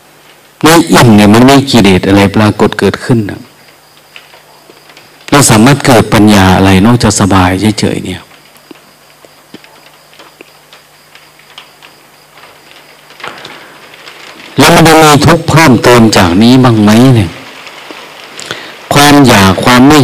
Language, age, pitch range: Thai, 60-79, 100-125 Hz